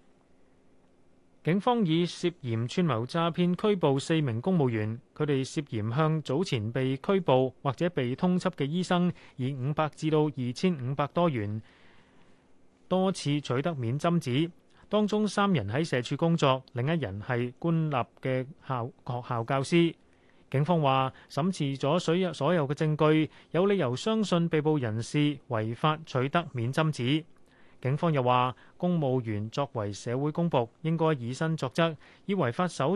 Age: 30-49